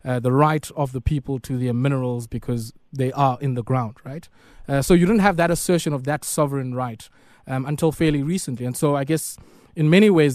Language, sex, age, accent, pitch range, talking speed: English, male, 20-39, South African, 130-165 Hz, 220 wpm